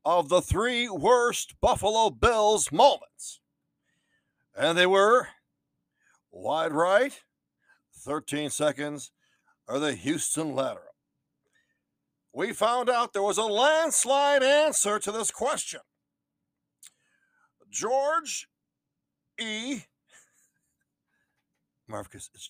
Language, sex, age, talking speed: English, male, 60-79, 90 wpm